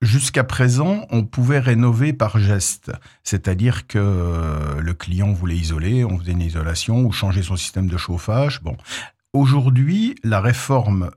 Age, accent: 50-69, French